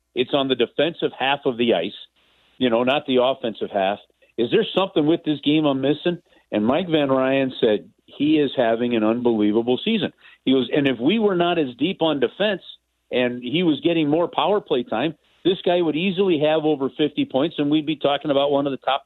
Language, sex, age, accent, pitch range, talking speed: English, male, 50-69, American, 120-155 Hz, 215 wpm